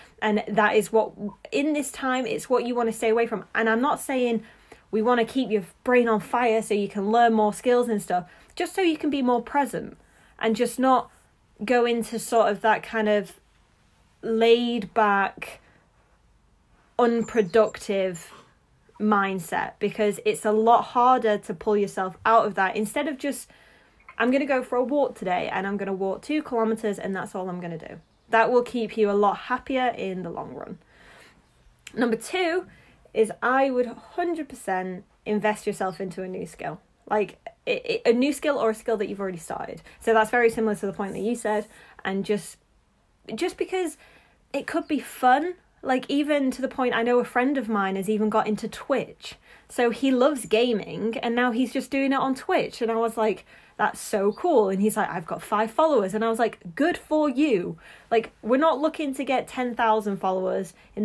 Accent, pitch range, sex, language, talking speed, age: British, 210-255 Hz, female, English, 200 wpm, 20-39